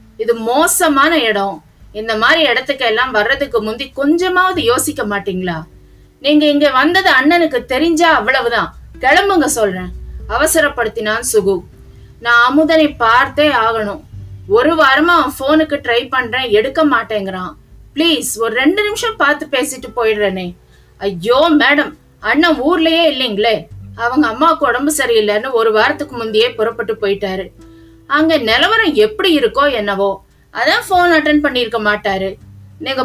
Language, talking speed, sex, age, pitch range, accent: Tamil, 85 wpm, female, 20-39, 215-300 Hz, native